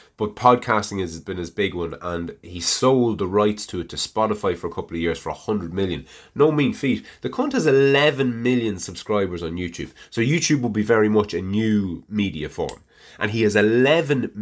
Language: English